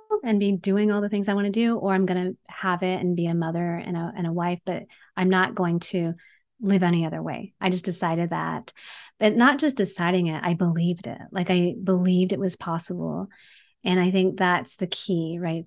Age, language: 30-49, English